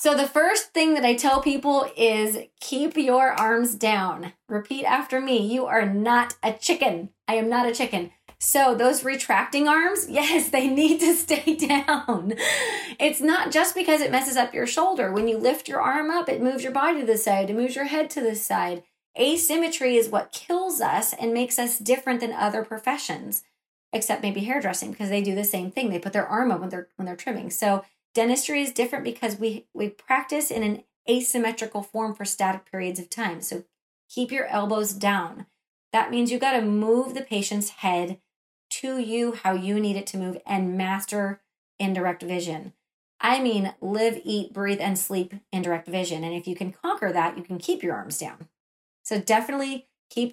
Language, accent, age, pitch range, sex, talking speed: English, American, 30-49, 200-260 Hz, female, 195 wpm